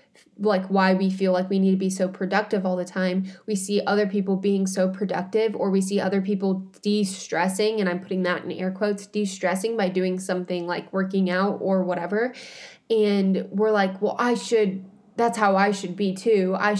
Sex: female